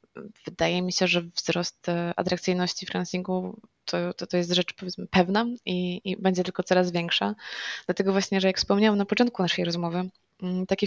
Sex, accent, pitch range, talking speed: female, native, 170-190 Hz, 160 wpm